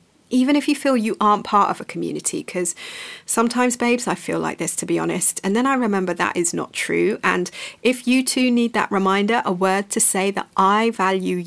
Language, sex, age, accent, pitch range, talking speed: English, female, 30-49, British, 190-245 Hz, 220 wpm